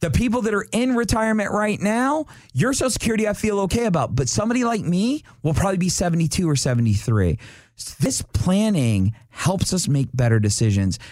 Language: English